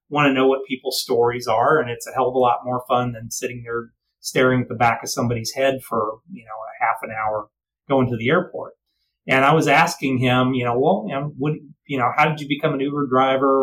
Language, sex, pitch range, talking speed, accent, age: English, male, 120-150 Hz, 250 wpm, American, 30-49